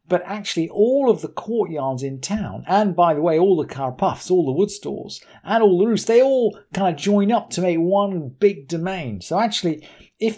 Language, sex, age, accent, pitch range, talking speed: English, male, 50-69, British, 135-200 Hz, 210 wpm